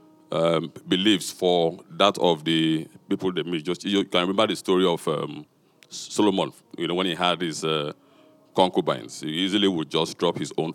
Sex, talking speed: male, 180 wpm